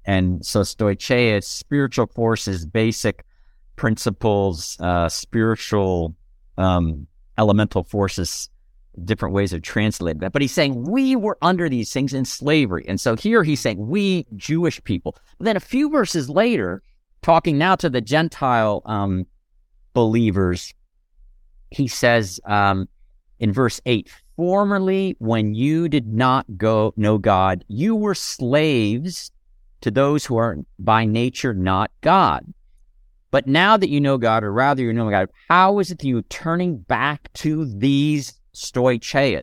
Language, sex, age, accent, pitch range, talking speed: English, male, 50-69, American, 100-155 Hz, 145 wpm